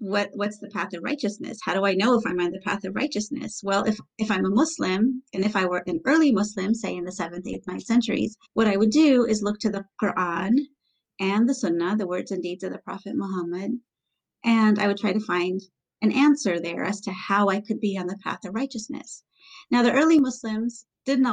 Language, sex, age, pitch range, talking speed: English, female, 30-49, 200-255 Hz, 230 wpm